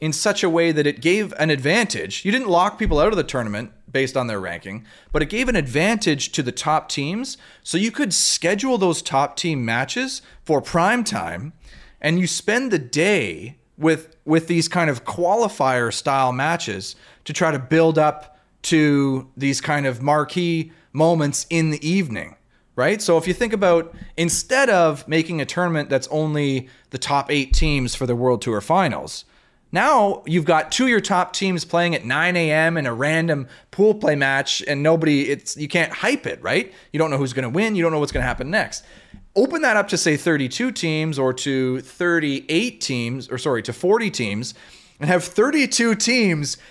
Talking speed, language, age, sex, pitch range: 195 wpm, English, 30-49, male, 140-180 Hz